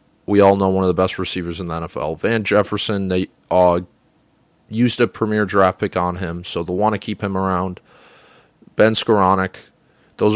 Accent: American